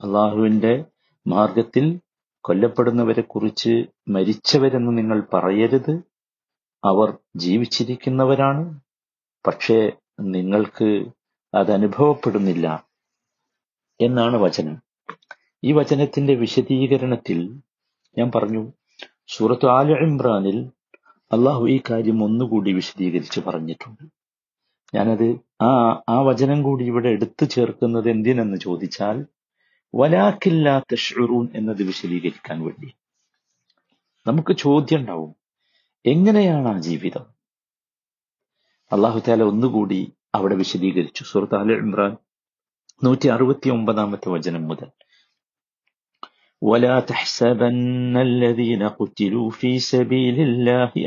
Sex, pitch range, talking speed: male, 105-130 Hz, 75 wpm